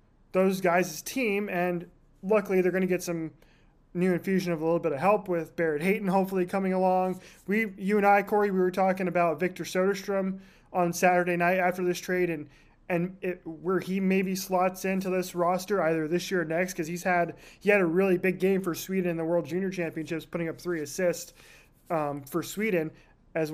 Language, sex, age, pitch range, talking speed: English, male, 20-39, 170-195 Hz, 205 wpm